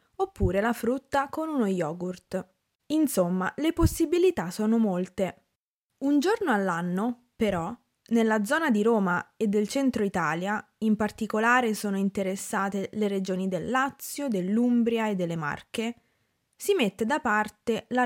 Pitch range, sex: 190-255 Hz, female